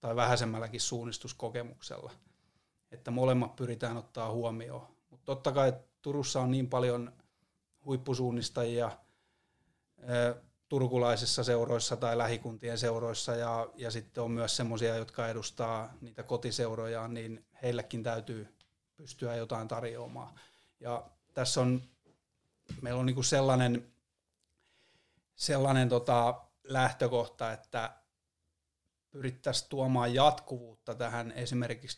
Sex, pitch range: male, 115-125 Hz